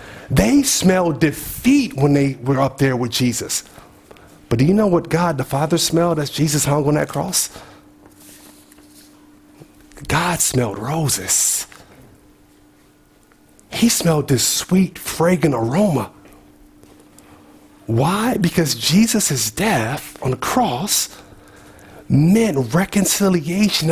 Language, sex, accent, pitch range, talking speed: English, male, American, 145-210 Hz, 110 wpm